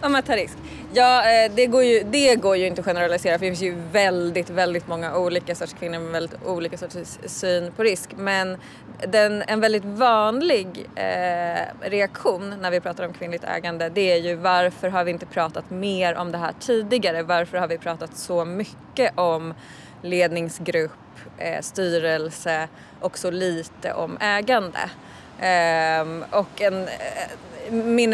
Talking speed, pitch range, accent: 165 wpm, 170-200 Hz, native